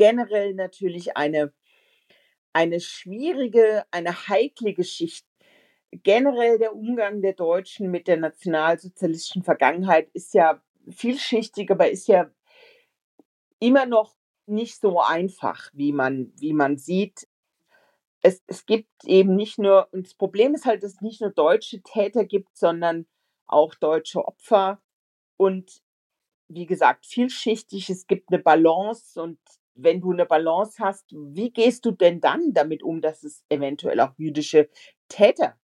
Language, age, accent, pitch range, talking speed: German, 40-59, German, 165-220 Hz, 135 wpm